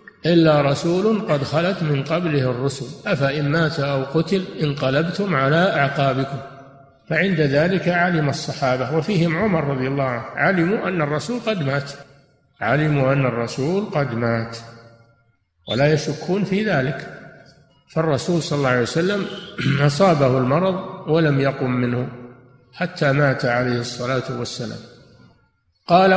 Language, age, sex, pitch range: Arabic, 50-69, male, 130-165 Hz